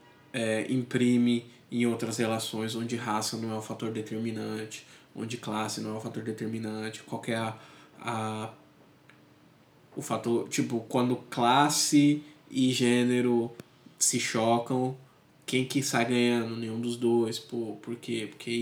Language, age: Portuguese, 20-39